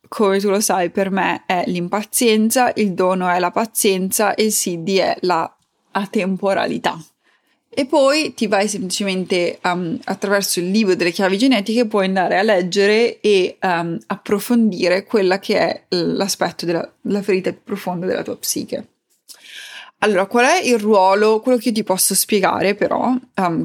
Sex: female